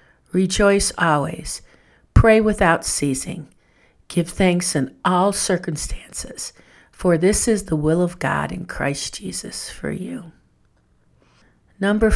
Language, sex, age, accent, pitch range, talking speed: English, female, 50-69, American, 155-210 Hz, 115 wpm